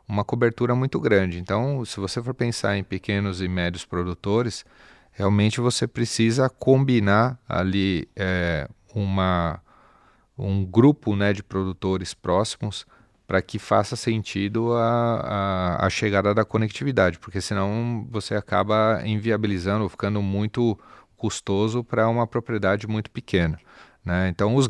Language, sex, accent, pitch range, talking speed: Portuguese, male, Brazilian, 95-115 Hz, 125 wpm